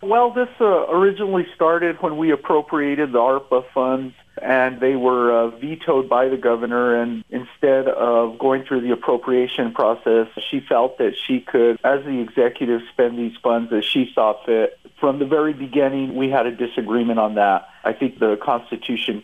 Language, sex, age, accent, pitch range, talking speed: English, male, 50-69, American, 110-135 Hz, 175 wpm